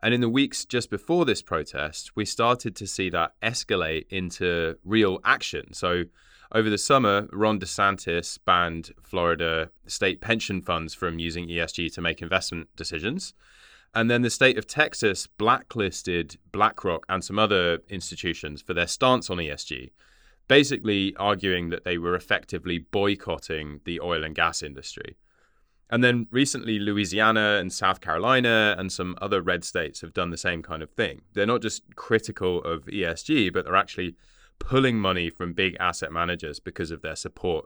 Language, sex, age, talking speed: English, male, 20-39, 165 wpm